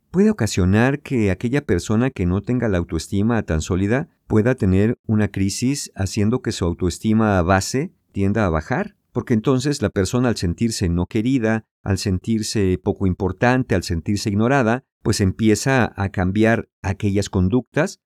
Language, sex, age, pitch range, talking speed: Spanish, male, 50-69, 95-125 Hz, 150 wpm